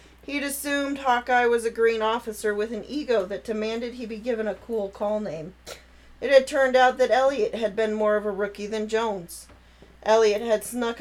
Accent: American